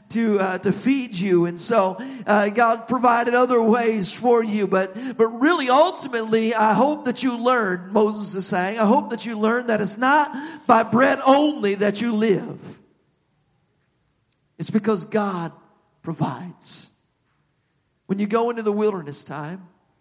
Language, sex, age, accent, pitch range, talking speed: English, male, 50-69, American, 190-235 Hz, 155 wpm